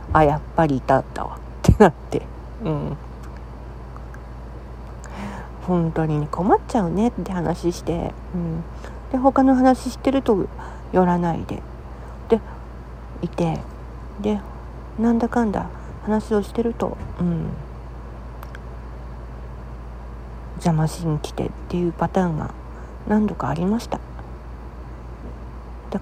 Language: Japanese